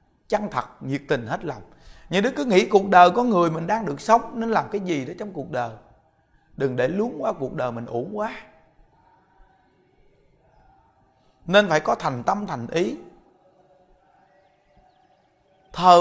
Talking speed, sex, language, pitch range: 160 wpm, male, Vietnamese, 170-220 Hz